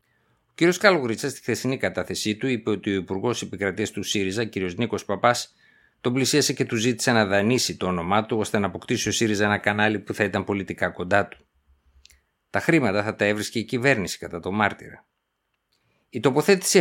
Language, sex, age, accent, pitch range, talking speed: Greek, male, 50-69, native, 95-125 Hz, 185 wpm